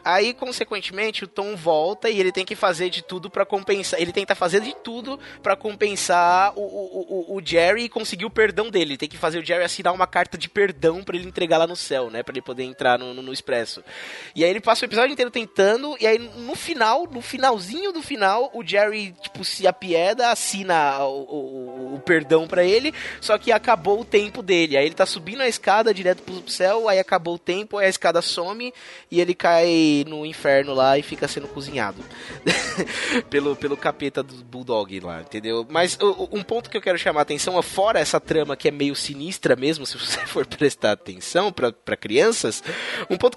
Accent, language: Brazilian, Portuguese